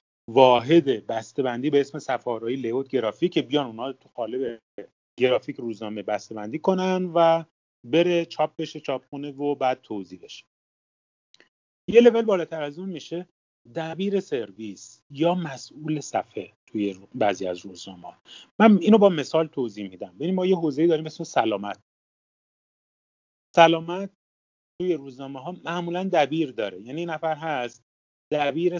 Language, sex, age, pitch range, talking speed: Persian, male, 30-49, 115-170 Hz, 130 wpm